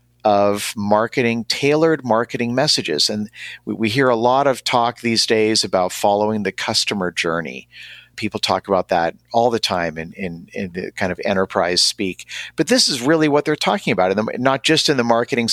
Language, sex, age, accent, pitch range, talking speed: English, male, 50-69, American, 100-130 Hz, 190 wpm